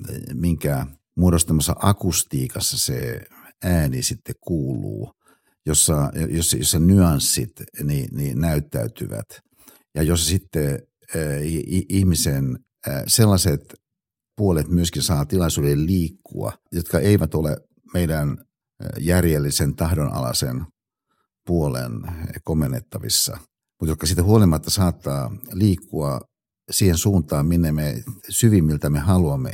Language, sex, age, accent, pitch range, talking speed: Finnish, male, 60-79, native, 75-95 Hz, 85 wpm